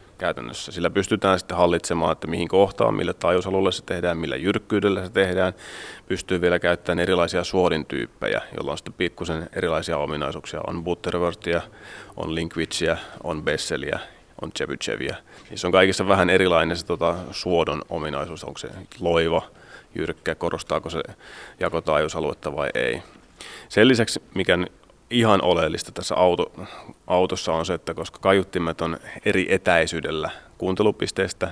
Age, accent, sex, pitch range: 30-49, native, male, 85-95 Hz